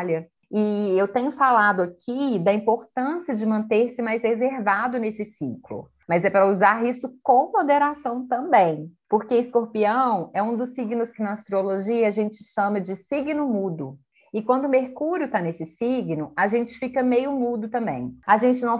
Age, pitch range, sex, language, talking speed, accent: 20-39, 190-250 Hz, female, Portuguese, 165 wpm, Brazilian